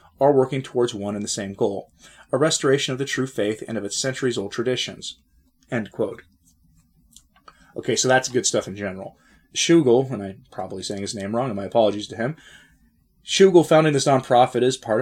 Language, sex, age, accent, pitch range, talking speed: English, male, 30-49, American, 105-135 Hz, 190 wpm